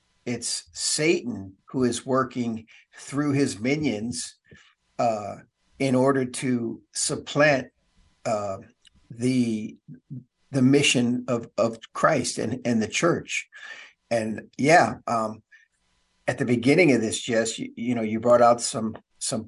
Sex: male